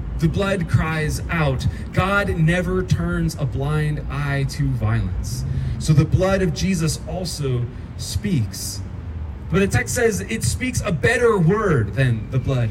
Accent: American